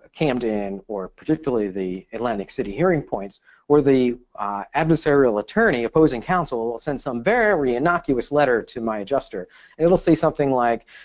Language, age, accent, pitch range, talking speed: English, 40-59, American, 115-145 Hz, 150 wpm